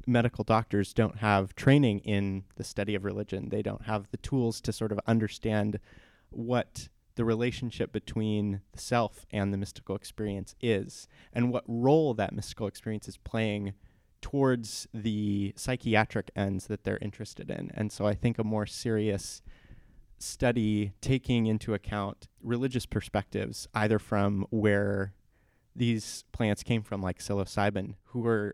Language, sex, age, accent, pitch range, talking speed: English, male, 20-39, American, 100-115 Hz, 145 wpm